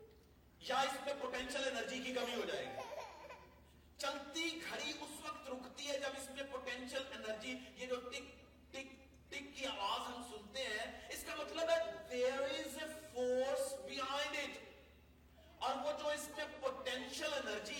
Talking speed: 130 wpm